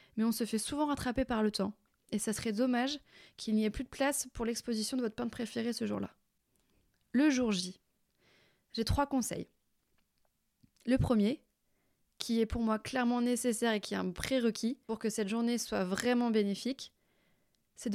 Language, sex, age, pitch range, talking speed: French, female, 20-39, 215-260 Hz, 185 wpm